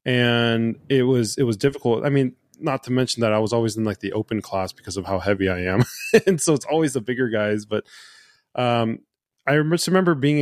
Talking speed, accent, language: 225 wpm, American, English